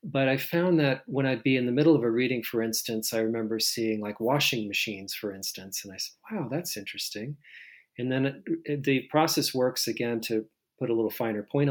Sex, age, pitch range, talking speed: male, 40-59, 110-140 Hz, 220 wpm